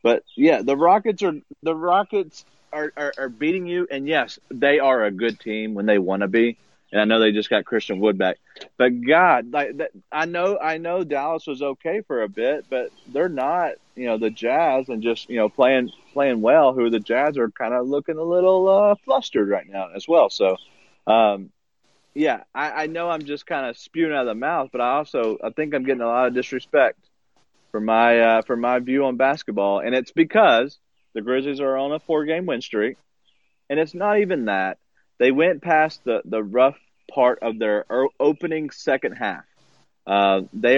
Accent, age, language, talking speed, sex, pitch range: American, 30-49, English, 205 wpm, male, 110-150 Hz